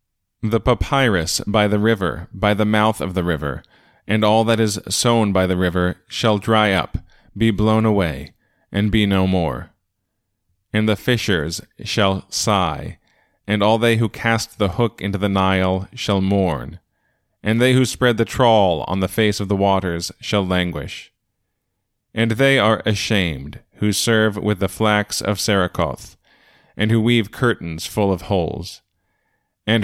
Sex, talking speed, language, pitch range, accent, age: male, 160 wpm, English, 95-115 Hz, American, 30-49